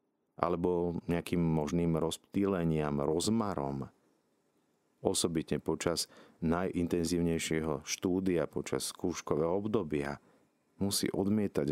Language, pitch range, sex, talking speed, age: Slovak, 80-105 Hz, male, 70 wpm, 50-69